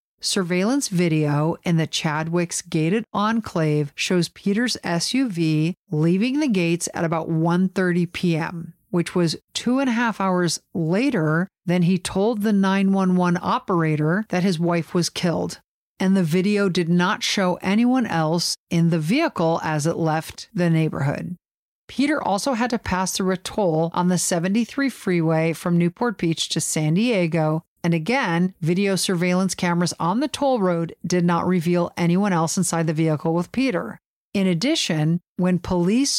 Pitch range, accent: 170-200 Hz, American